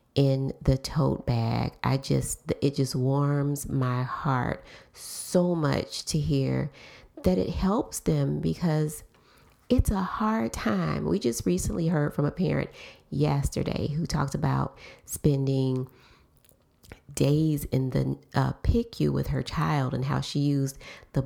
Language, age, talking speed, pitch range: English, 30-49, 140 wpm, 125-145 Hz